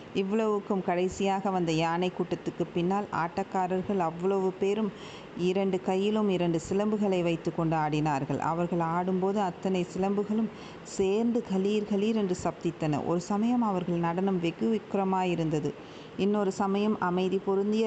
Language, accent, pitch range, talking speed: Tamil, native, 175-205 Hz, 120 wpm